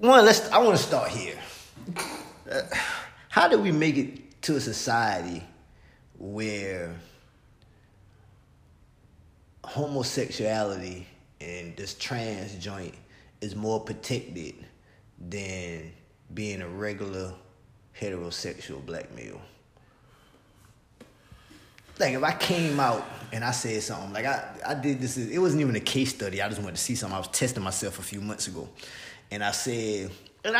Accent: American